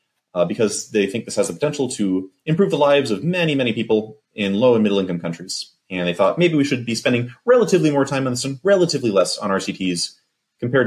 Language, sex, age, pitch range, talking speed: English, male, 30-49, 95-135 Hz, 225 wpm